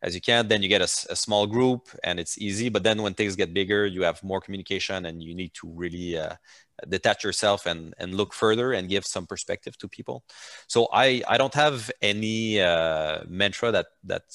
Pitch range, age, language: 90-110 Hz, 30-49, English